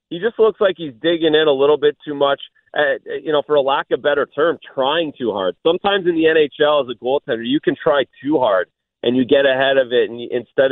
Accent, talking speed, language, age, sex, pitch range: American, 250 wpm, English, 30-49, male, 125-165 Hz